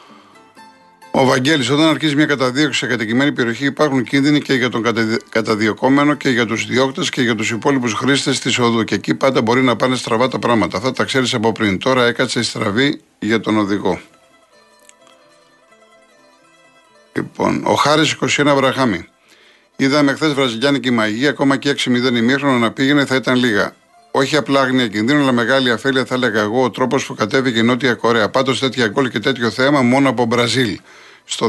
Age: 50-69